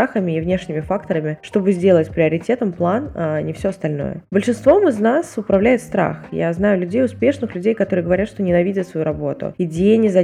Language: Russian